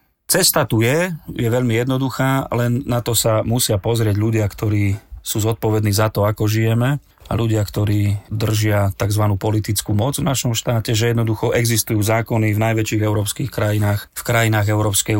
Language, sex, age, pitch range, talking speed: Slovak, male, 30-49, 105-115 Hz, 160 wpm